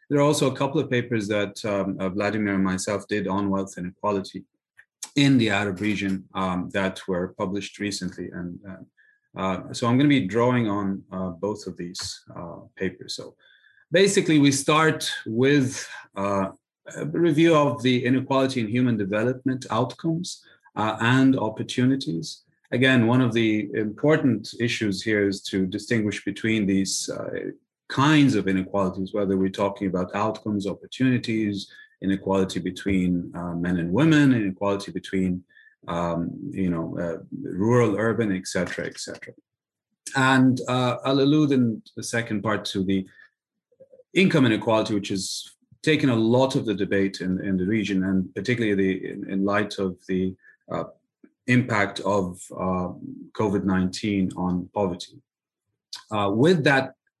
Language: English